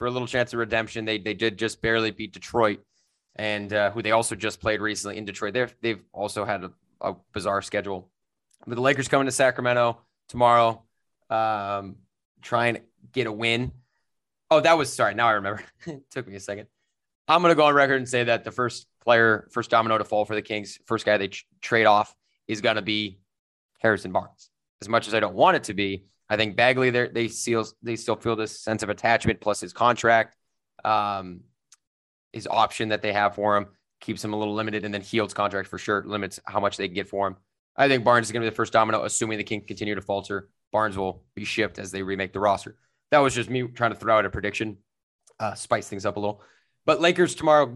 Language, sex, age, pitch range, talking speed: English, male, 20-39, 105-120 Hz, 230 wpm